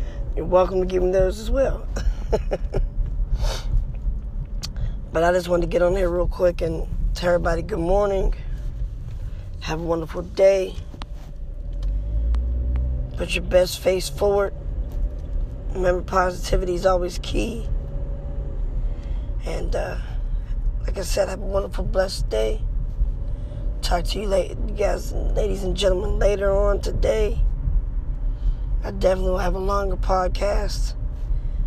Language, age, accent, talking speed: English, 20-39, American, 125 wpm